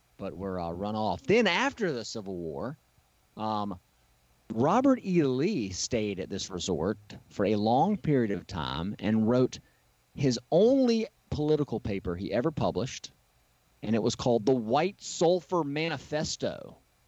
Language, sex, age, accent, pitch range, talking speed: English, male, 30-49, American, 90-125 Hz, 145 wpm